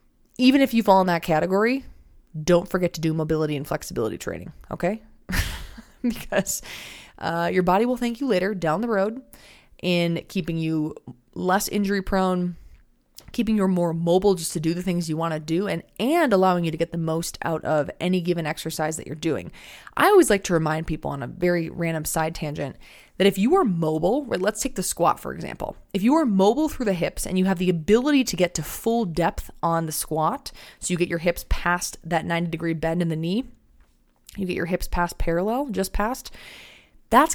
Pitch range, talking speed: 165-220 Hz, 205 wpm